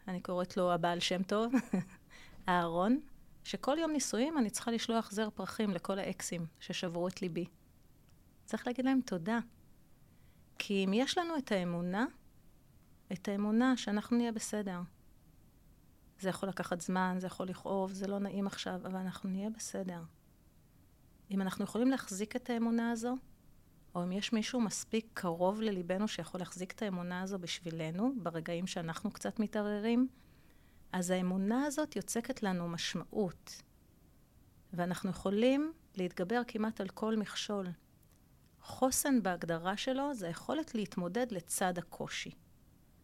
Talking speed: 130 wpm